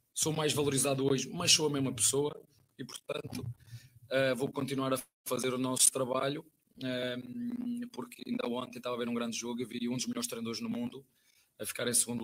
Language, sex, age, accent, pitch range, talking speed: Portuguese, male, 20-39, Portuguese, 120-130 Hz, 190 wpm